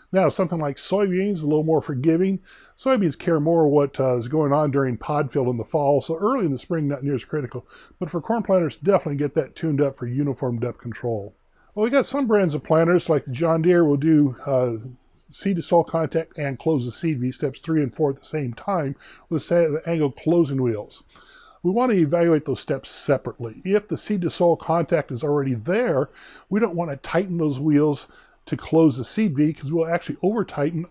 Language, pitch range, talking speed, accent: English, 135-170 Hz, 220 wpm, American